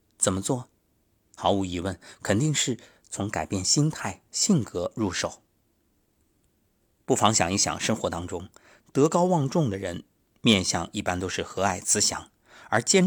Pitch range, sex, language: 95-130 Hz, male, Chinese